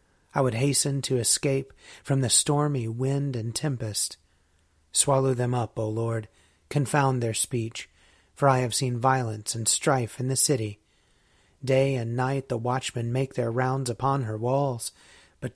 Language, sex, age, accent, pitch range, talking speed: English, male, 30-49, American, 115-145 Hz, 160 wpm